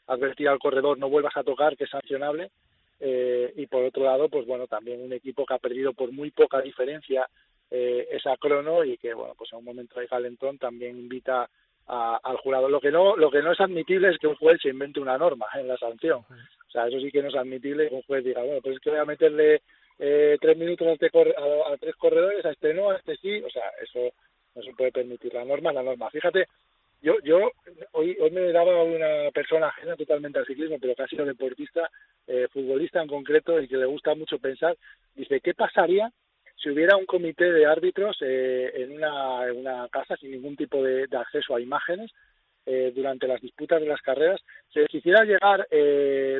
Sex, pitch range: male, 130-185 Hz